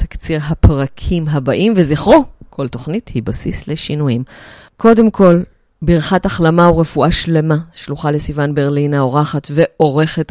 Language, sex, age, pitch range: Hebrew, female, 30-49, 140-175 Hz